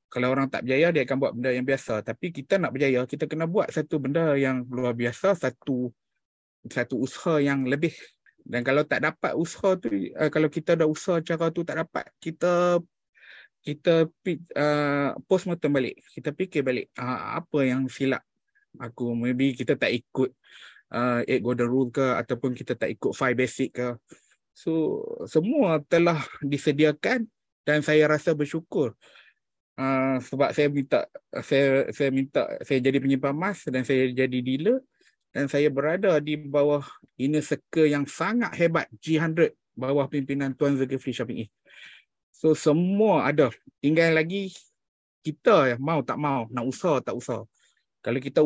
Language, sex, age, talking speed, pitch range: Malay, male, 20-39, 155 wpm, 130-165 Hz